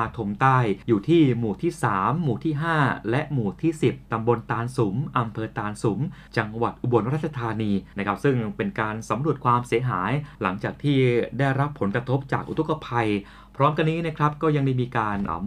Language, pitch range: Thai, 115-150 Hz